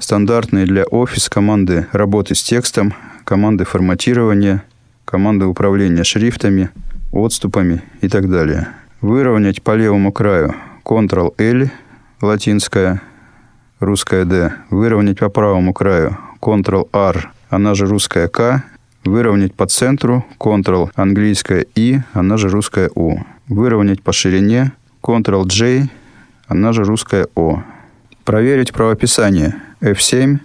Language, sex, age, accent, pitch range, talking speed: Russian, male, 20-39, native, 100-120 Hz, 115 wpm